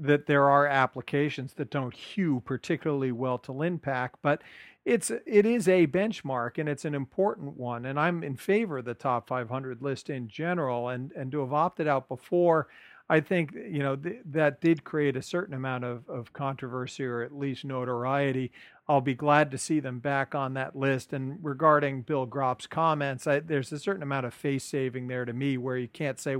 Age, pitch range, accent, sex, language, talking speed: 50-69, 130-155 Hz, American, male, English, 200 wpm